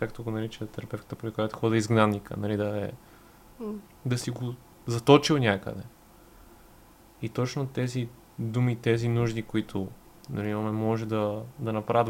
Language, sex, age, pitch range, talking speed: Bulgarian, male, 20-39, 110-120 Hz, 145 wpm